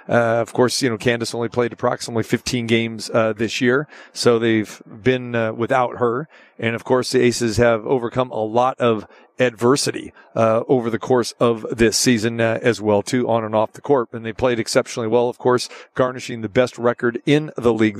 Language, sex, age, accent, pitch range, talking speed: English, male, 40-59, American, 115-125 Hz, 205 wpm